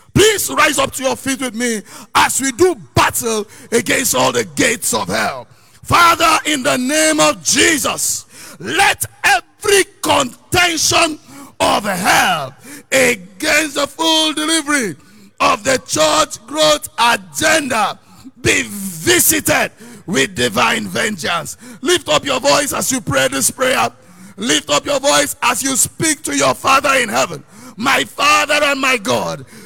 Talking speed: 140 wpm